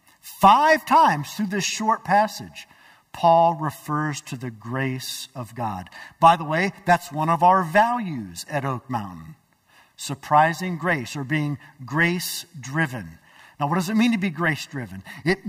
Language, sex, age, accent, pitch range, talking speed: English, male, 50-69, American, 130-180 Hz, 145 wpm